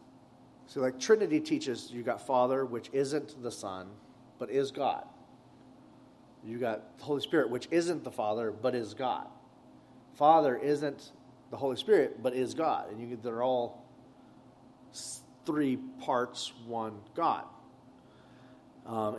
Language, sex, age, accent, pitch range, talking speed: English, male, 30-49, American, 115-140 Hz, 140 wpm